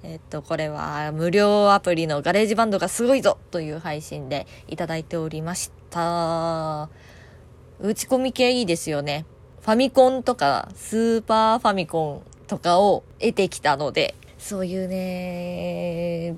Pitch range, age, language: 170-230 Hz, 20-39, Japanese